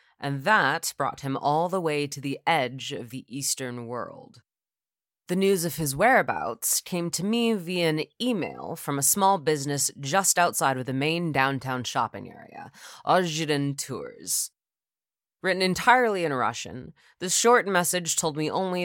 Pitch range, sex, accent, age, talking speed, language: 135-180 Hz, female, American, 20-39, 155 wpm, English